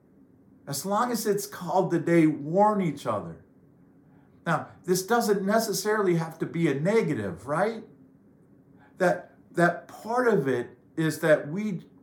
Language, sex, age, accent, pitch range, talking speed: English, male, 50-69, American, 150-190 Hz, 140 wpm